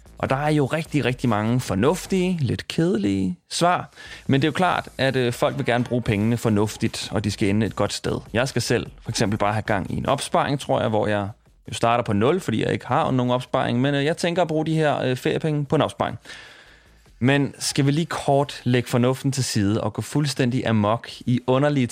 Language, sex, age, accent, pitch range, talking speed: Danish, male, 30-49, native, 110-150 Hz, 220 wpm